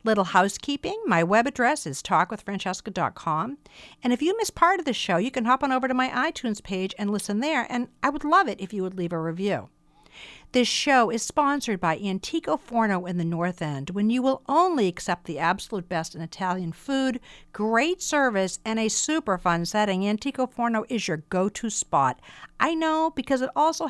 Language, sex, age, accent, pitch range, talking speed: English, female, 50-69, American, 170-245 Hz, 195 wpm